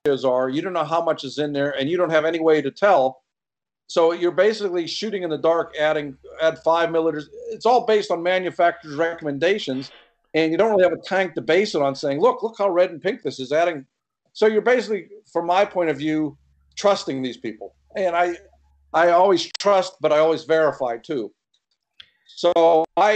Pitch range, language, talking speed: 145-190 Hz, English, 205 wpm